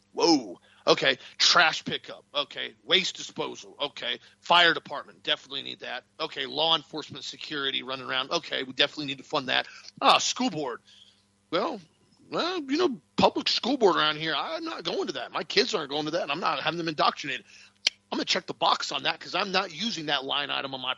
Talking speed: 205 wpm